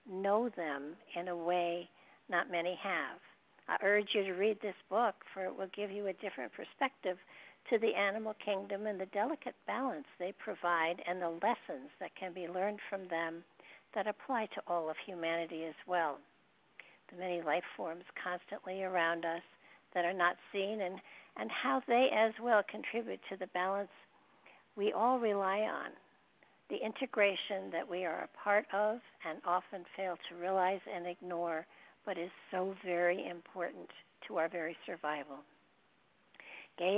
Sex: female